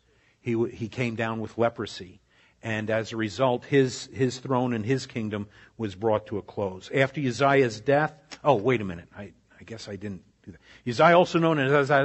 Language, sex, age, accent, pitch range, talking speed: Italian, male, 50-69, American, 115-155 Hz, 200 wpm